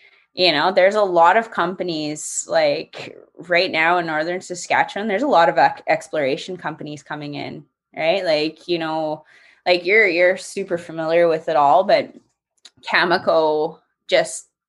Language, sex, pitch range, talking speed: English, female, 155-180 Hz, 145 wpm